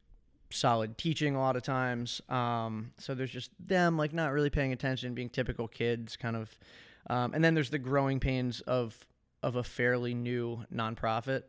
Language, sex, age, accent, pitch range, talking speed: English, male, 20-39, American, 115-135 Hz, 180 wpm